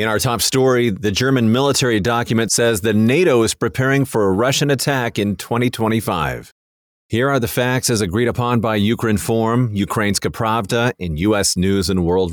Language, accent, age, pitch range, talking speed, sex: English, American, 40-59, 95-120 Hz, 175 wpm, male